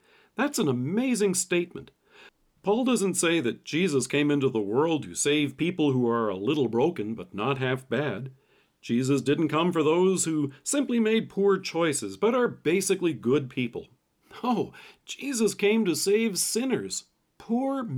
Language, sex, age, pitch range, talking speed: English, male, 50-69, 135-205 Hz, 155 wpm